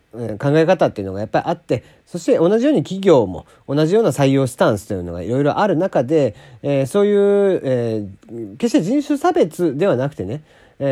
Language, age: Japanese, 40-59